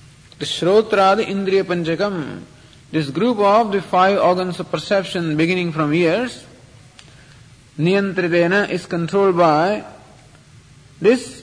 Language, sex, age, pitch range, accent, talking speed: English, male, 40-59, 145-190 Hz, Indian, 110 wpm